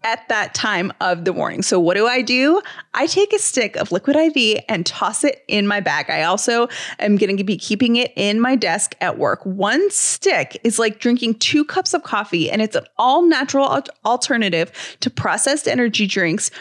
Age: 20-39